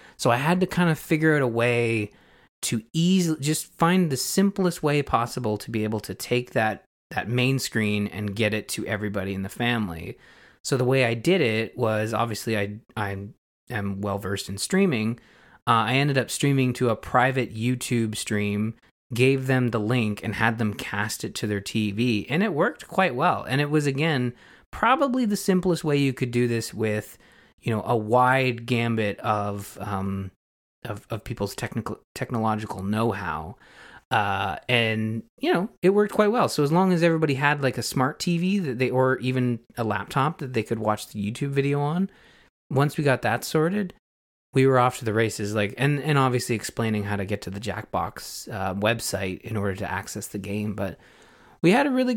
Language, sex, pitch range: English, male, 105-140 Hz